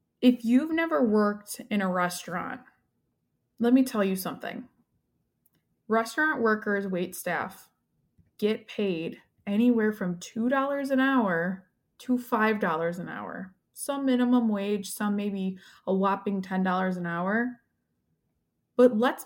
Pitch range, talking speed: 200-250 Hz, 120 wpm